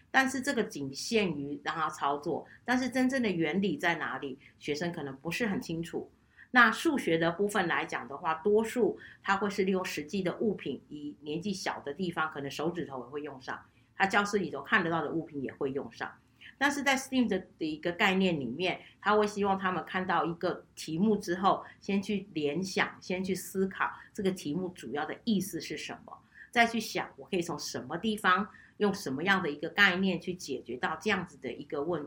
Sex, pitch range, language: female, 150-200 Hz, Chinese